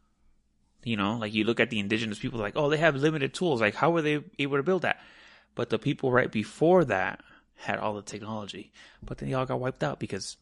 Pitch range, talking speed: 100-130 Hz, 235 wpm